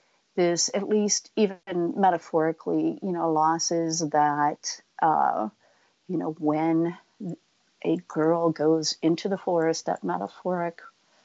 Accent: American